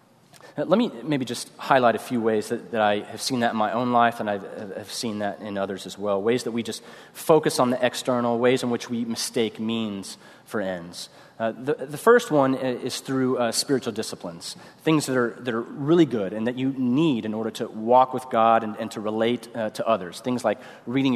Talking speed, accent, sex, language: 225 wpm, American, male, English